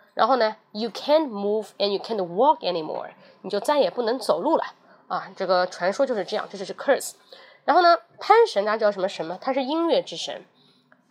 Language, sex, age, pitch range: Chinese, female, 20-39, 210-295 Hz